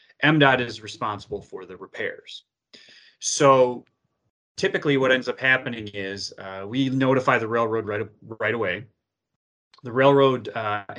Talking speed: 130 wpm